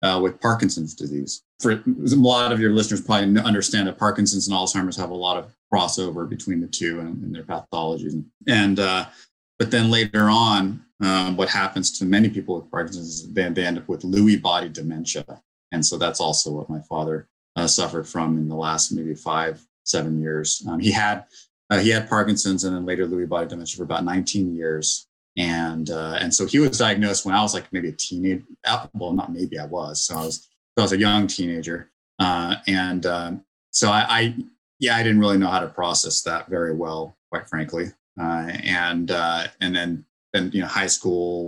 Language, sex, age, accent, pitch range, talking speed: English, male, 30-49, American, 85-100 Hz, 205 wpm